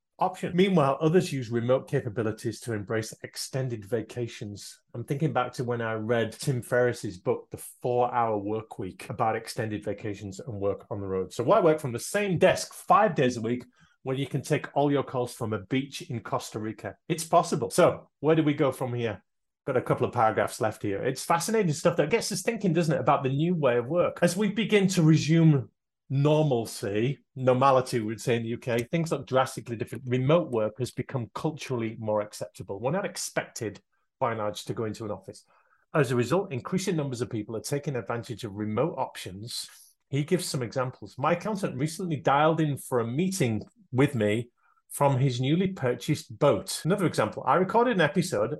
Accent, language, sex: British, English, male